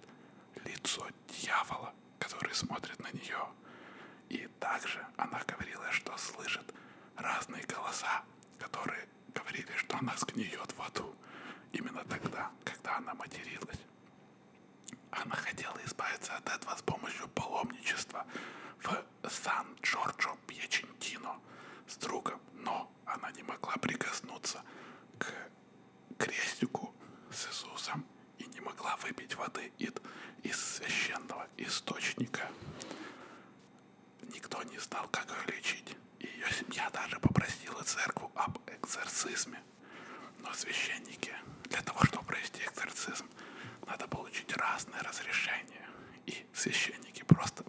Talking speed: 100 wpm